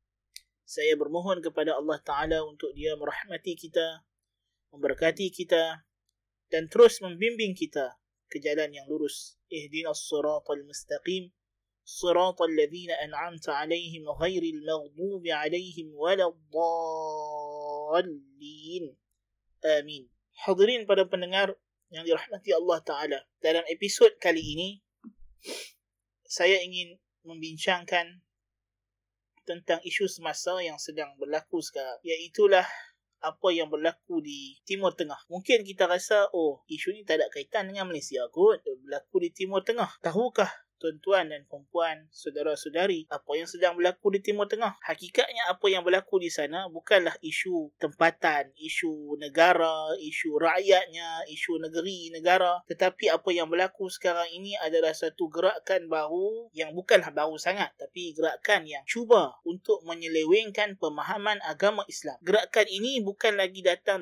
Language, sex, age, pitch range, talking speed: Malay, male, 20-39, 155-195 Hz, 125 wpm